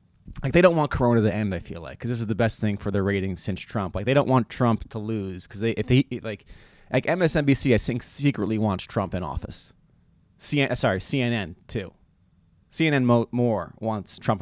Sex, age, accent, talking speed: male, 30-49, American, 210 wpm